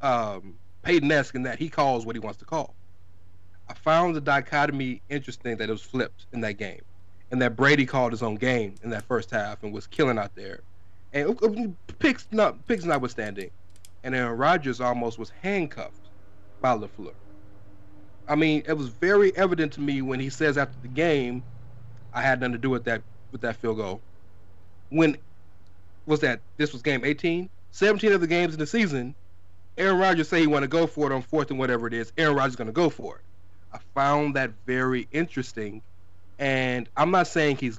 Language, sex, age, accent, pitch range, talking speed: English, male, 30-49, American, 100-145 Hz, 200 wpm